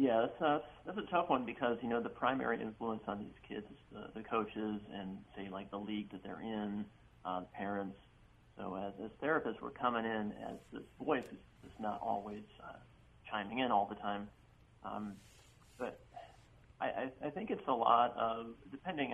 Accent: American